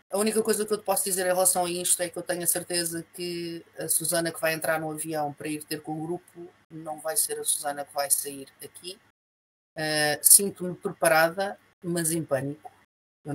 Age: 30-49